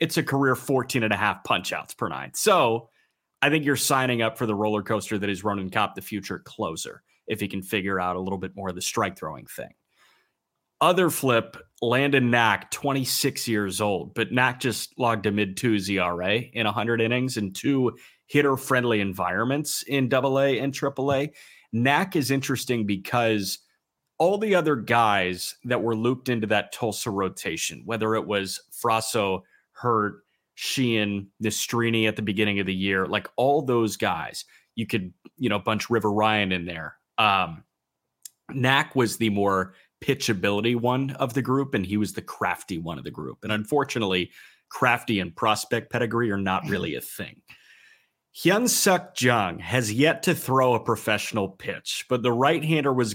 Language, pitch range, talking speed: English, 100-135 Hz, 175 wpm